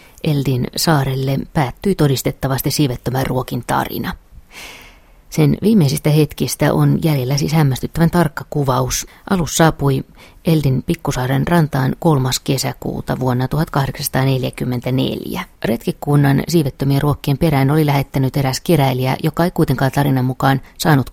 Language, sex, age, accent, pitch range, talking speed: Finnish, female, 30-49, native, 125-150 Hz, 110 wpm